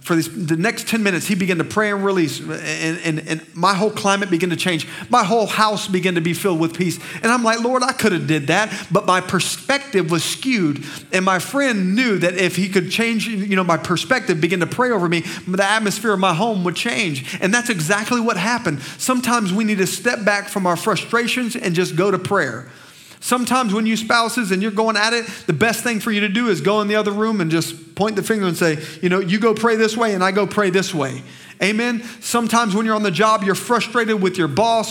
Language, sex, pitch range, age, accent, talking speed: English, male, 165-215 Hz, 40-59, American, 240 wpm